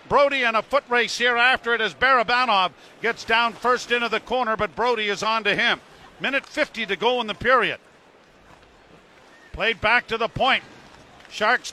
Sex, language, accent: male, English, American